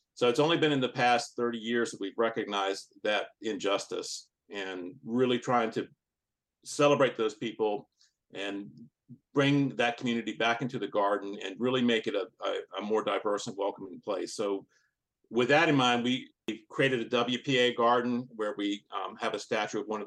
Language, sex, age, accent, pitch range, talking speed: English, male, 50-69, American, 110-130 Hz, 180 wpm